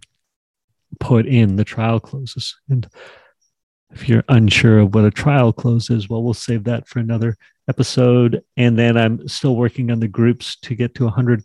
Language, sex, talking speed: English, male, 180 wpm